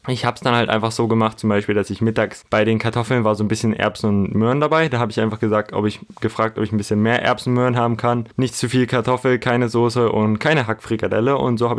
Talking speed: 275 wpm